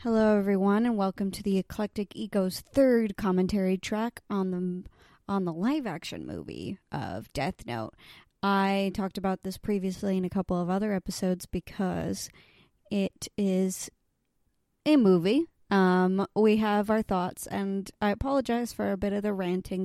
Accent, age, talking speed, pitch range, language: American, 30-49, 150 wpm, 185-215 Hz, English